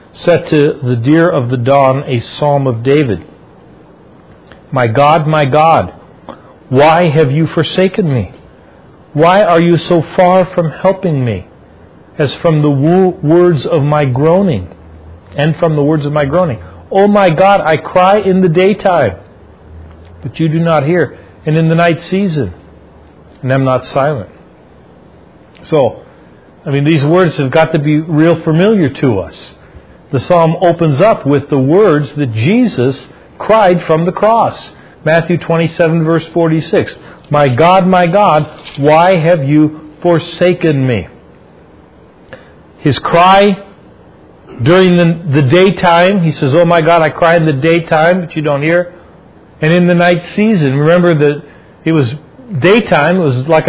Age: 40-59